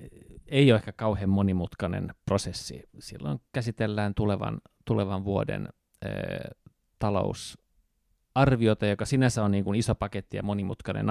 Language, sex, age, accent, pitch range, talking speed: Finnish, male, 30-49, native, 95-115 Hz, 120 wpm